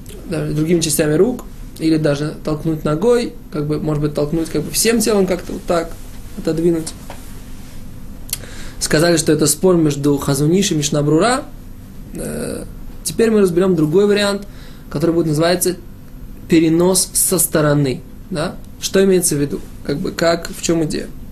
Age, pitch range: 20-39, 155-190 Hz